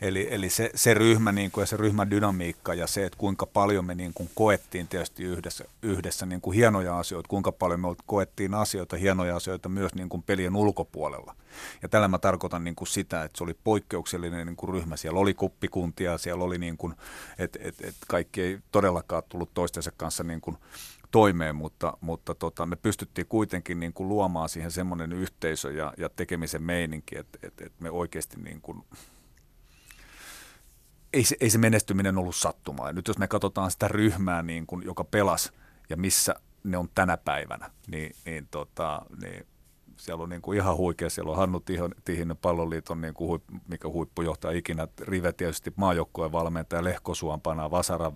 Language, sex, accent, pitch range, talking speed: Finnish, male, native, 80-95 Hz, 170 wpm